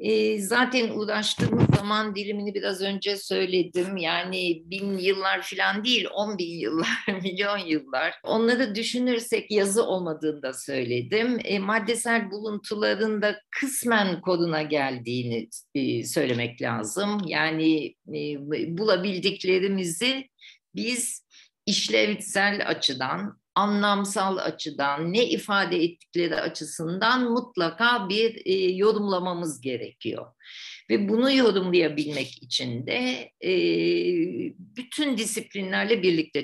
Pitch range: 155-220 Hz